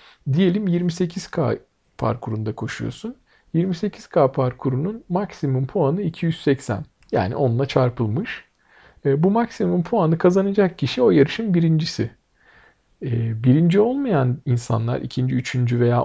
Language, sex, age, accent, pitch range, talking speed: Turkish, male, 50-69, native, 125-185 Hz, 95 wpm